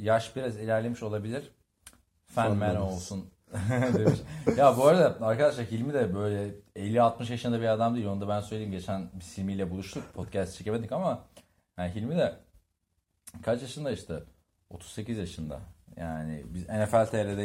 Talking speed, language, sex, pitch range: 145 wpm, Turkish, male, 90-120 Hz